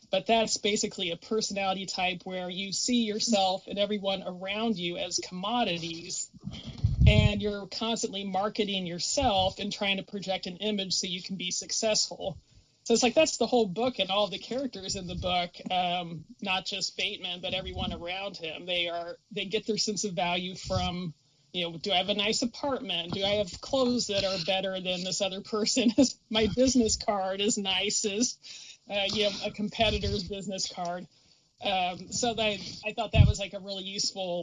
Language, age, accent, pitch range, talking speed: English, 30-49, American, 180-215 Hz, 180 wpm